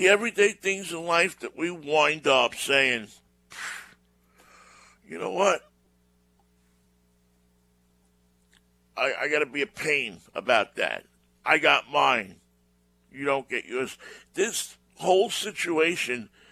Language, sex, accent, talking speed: English, male, American, 115 wpm